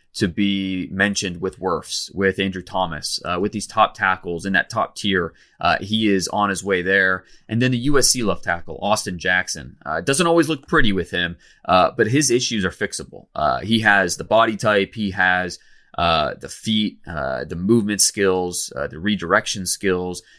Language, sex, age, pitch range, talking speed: English, male, 30-49, 90-110 Hz, 190 wpm